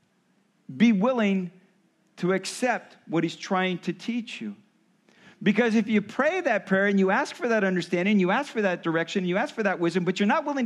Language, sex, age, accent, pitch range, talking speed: English, male, 50-69, American, 180-230 Hz, 205 wpm